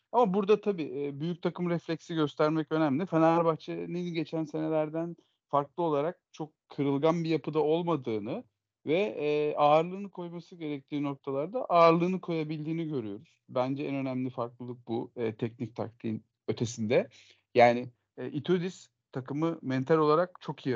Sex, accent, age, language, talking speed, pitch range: male, native, 40-59, Turkish, 120 wpm, 130-170 Hz